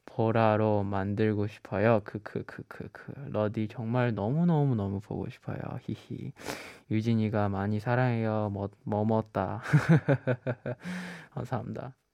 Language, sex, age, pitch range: Korean, male, 20-39, 110-150 Hz